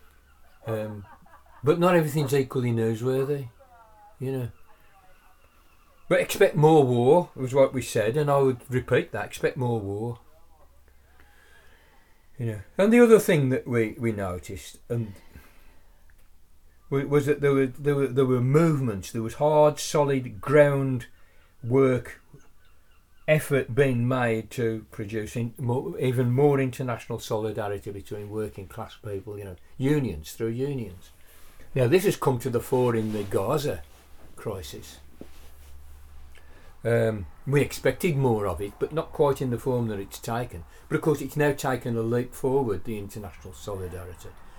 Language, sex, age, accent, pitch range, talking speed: English, male, 40-59, British, 95-135 Hz, 145 wpm